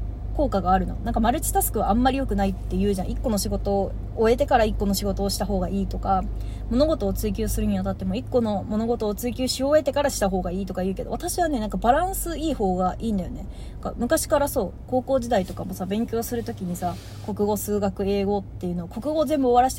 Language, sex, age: Japanese, female, 20-39